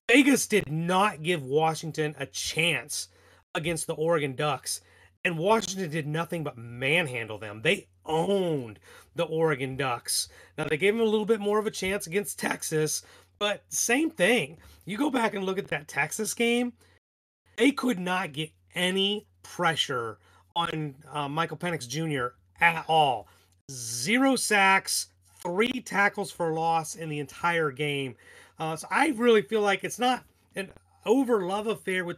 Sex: male